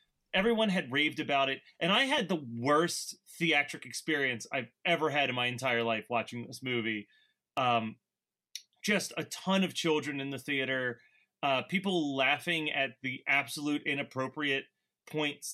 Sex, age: male, 30-49